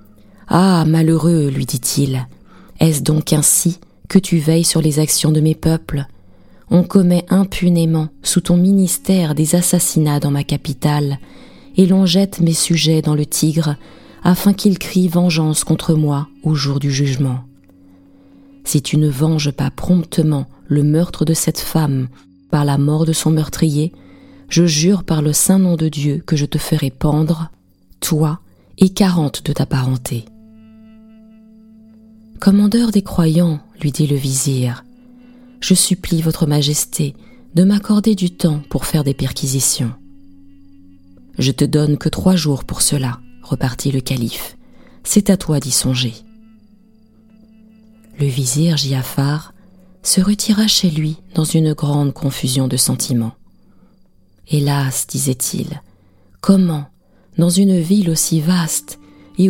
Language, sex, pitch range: French, female, 140-180 Hz